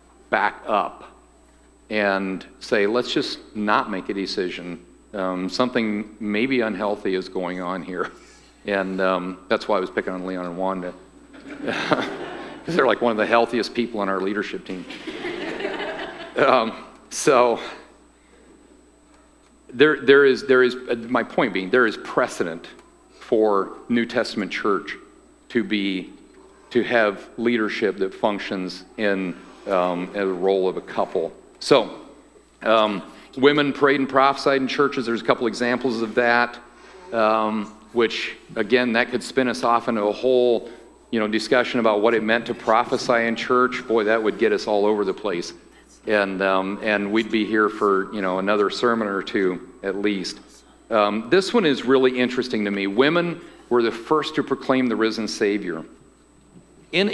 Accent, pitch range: American, 100-125 Hz